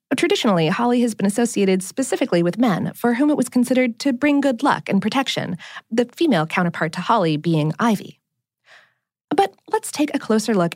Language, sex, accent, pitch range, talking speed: English, female, American, 180-275 Hz, 180 wpm